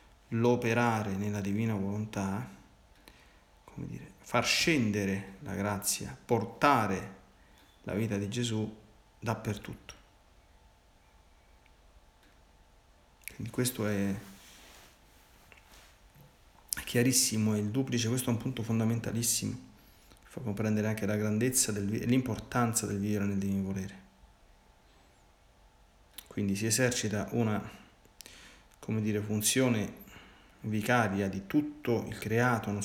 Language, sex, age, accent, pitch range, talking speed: Italian, male, 40-59, native, 100-115 Hz, 100 wpm